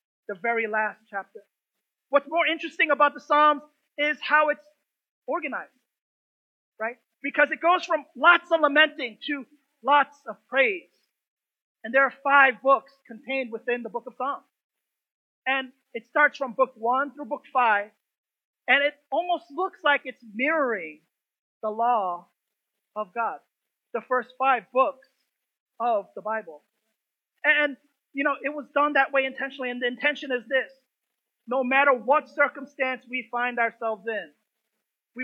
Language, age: English, 30-49